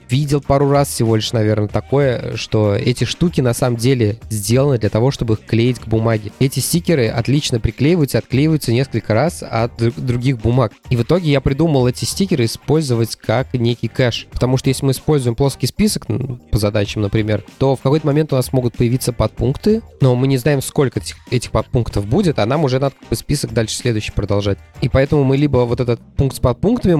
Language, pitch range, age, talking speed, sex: Russian, 115-145 Hz, 20-39, 200 wpm, male